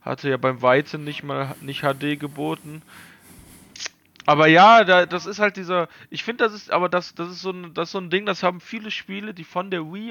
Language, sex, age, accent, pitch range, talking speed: German, male, 30-49, German, 145-190 Hz, 230 wpm